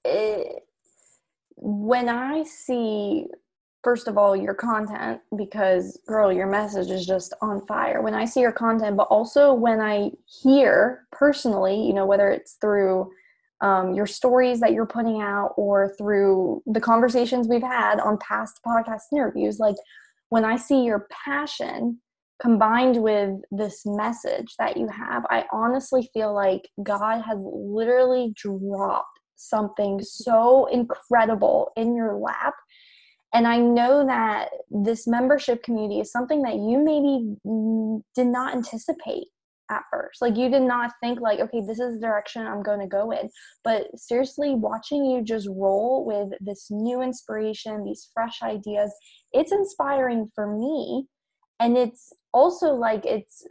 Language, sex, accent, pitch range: English, female, American, 210-255 Hz